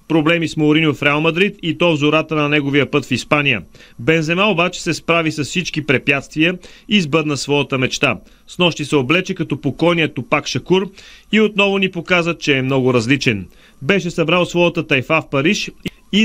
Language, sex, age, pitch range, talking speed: Bulgarian, male, 40-59, 140-175 Hz, 180 wpm